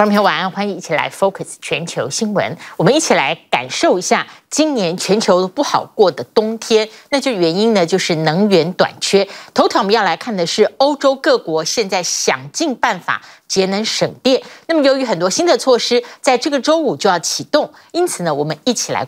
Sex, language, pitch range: female, Chinese, 190-280 Hz